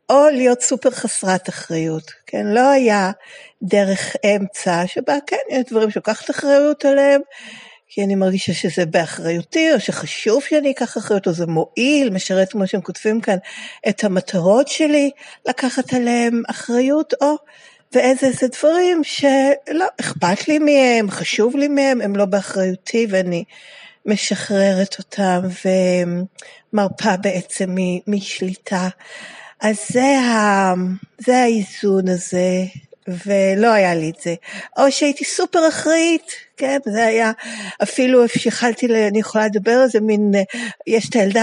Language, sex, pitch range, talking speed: Hebrew, female, 190-255 Hz, 125 wpm